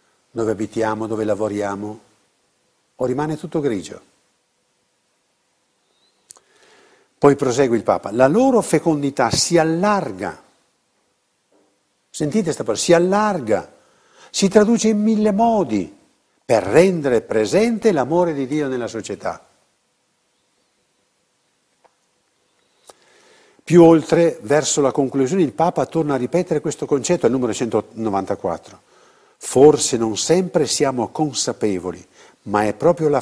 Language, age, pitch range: Italian, 60-79, 110-180 Hz